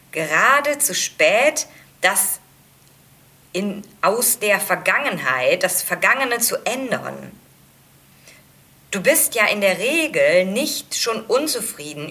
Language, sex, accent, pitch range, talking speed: German, female, German, 165-245 Hz, 100 wpm